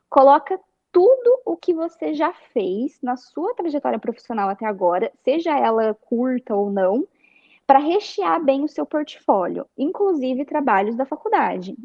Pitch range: 225-335 Hz